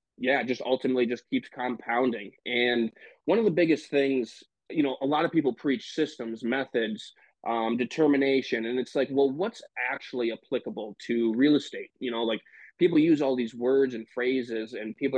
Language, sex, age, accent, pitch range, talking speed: English, male, 20-39, American, 120-140 Hz, 180 wpm